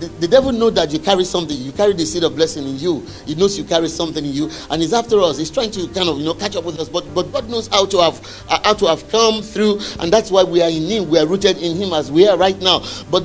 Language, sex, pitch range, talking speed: English, male, 160-215 Hz, 310 wpm